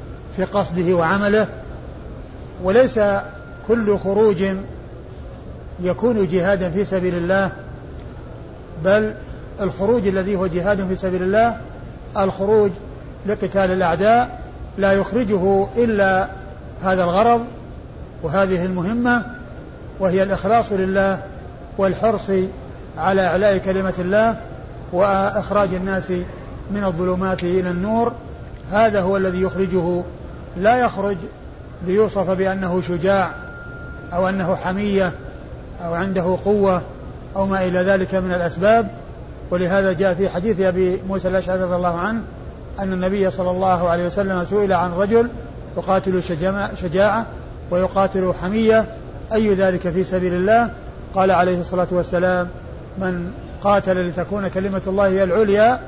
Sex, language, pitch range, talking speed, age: male, Arabic, 180-200 Hz, 110 wpm, 50-69